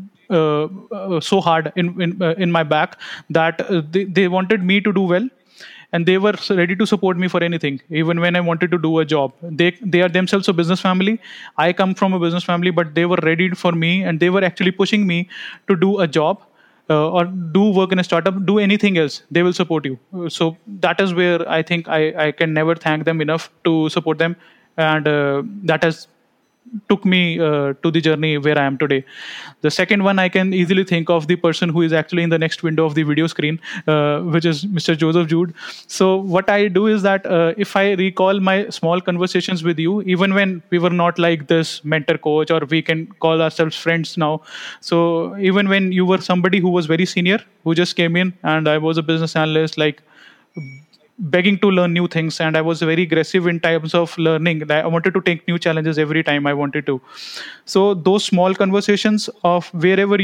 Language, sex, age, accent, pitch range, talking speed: English, male, 30-49, Indian, 160-190 Hz, 220 wpm